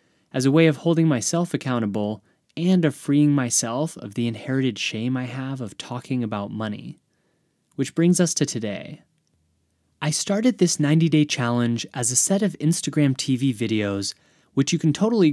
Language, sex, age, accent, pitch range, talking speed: English, male, 20-39, American, 120-160 Hz, 165 wpm